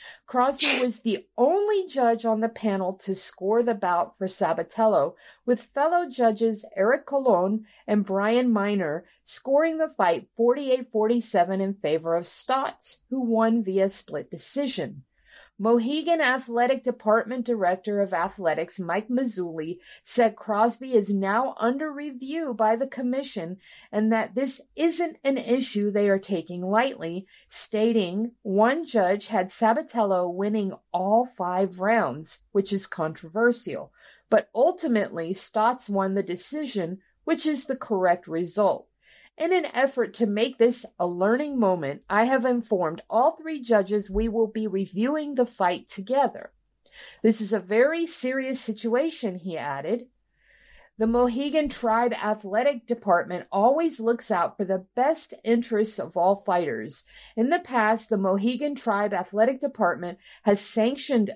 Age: 50-69